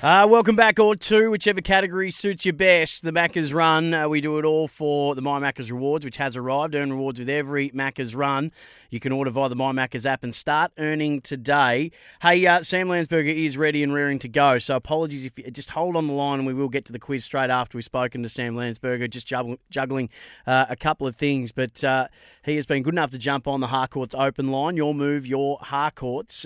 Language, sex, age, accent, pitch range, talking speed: English, male, 30-49, Australian, 125-145 Hz, 230 wpm